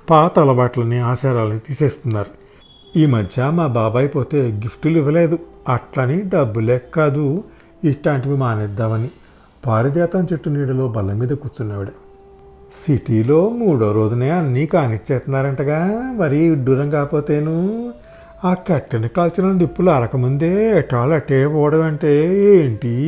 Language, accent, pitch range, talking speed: Telugu, native, 120-170 Hz, 105 wpm